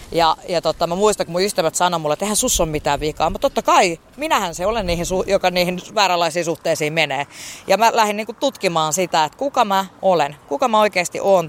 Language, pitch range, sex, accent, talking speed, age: Finnish, 155-205 Hz, female, native, 220 wpm, 20-39